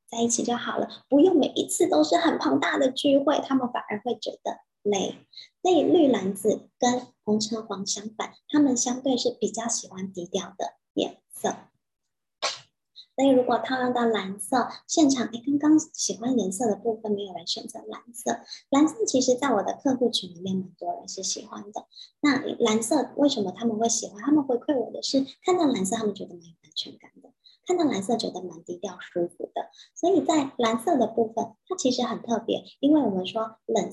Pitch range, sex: 205-275 Hz, male